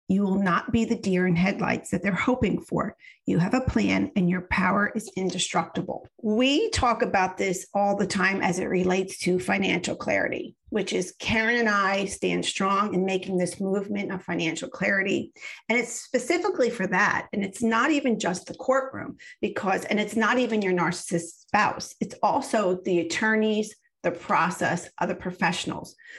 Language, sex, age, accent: English, female, 40-59, American